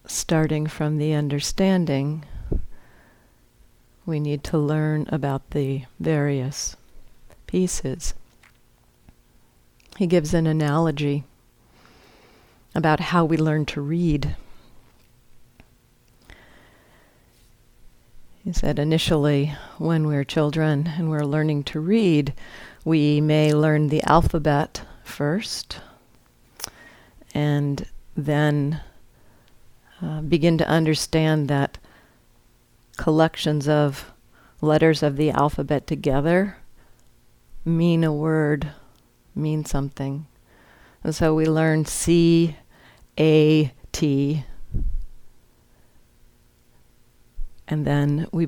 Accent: American